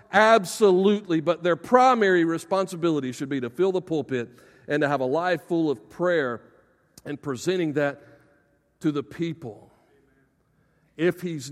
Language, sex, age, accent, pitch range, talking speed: English, male, 50-69, American, 155-210 Hz, 140 wpm